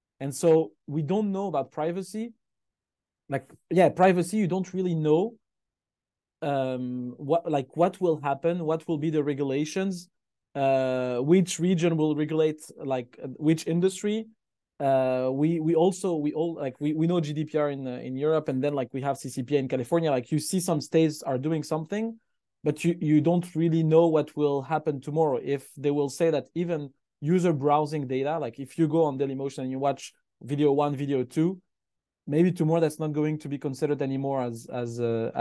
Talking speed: 185 wpm